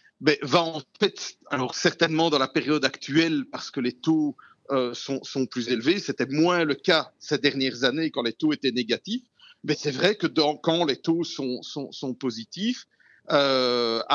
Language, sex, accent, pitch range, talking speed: French, male, French, 130-170 Hz, 185 wpm